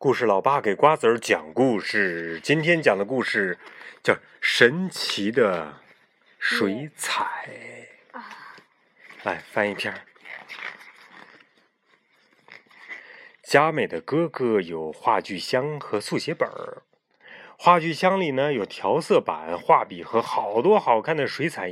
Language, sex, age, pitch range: Chinese, male, 30-49, 130-195 Hz